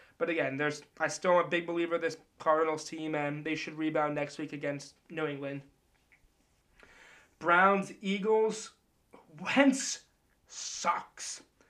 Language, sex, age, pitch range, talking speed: English, male, 20-39, 175-250 Hz, 130 wpm